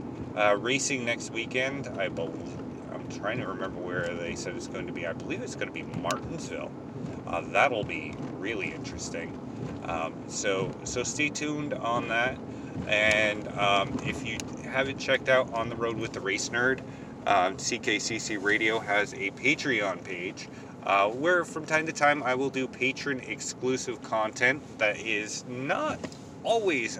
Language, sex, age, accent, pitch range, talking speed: English, male, 30-49, American, 100-135 Hz, 160 wpm